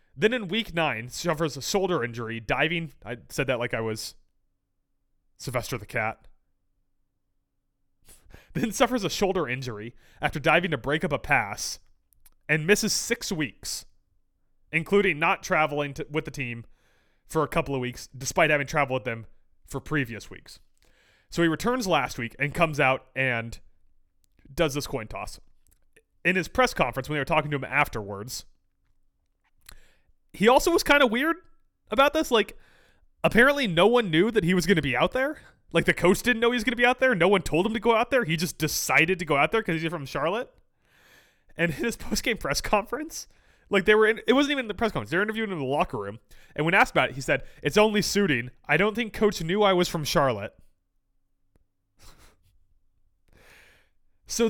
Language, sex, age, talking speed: English, male, 30-49, 190 wpm